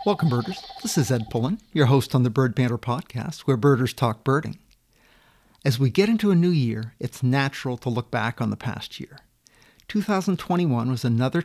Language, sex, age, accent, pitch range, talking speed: English, male, 50-69, American, 125-190 Hz, 190 wpm